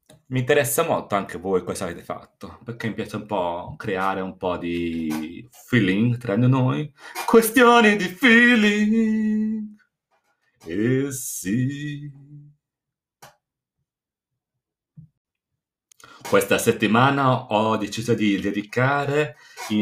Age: 40-59